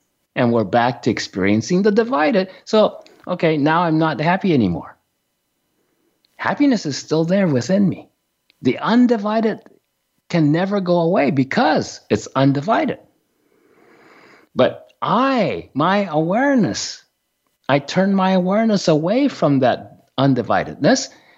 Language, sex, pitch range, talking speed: English, male, 145-205 Hz, 115 wpm